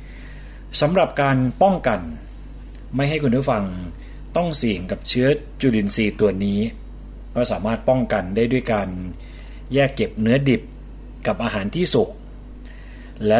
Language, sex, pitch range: Thai, male, 100-130 Hz